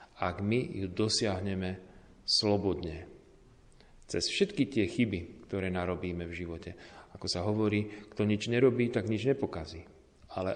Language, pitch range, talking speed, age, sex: Slovak, 90-110 Hz, 130 wpm, 40-59, male